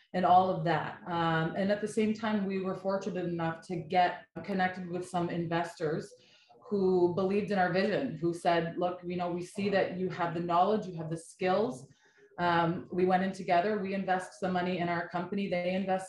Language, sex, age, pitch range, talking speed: English, female, 20-39, 170-195 Hz, 205 wpm